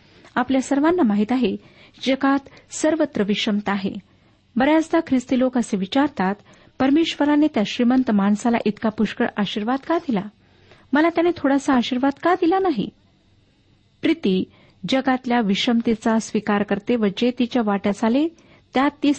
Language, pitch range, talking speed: Marathi, 210-280 Hz, 120 wpm